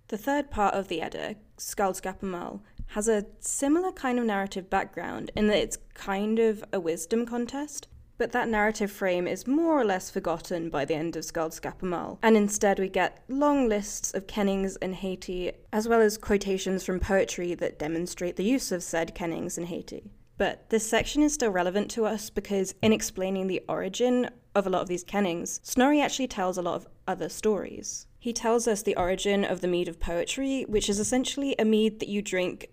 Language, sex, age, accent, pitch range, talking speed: English, female, 20-39, British, 180-220 Hz, 195 wpm